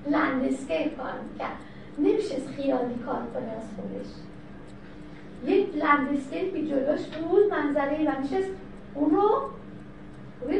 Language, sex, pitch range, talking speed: Persian, female, 285-360 Hz, 110 wpm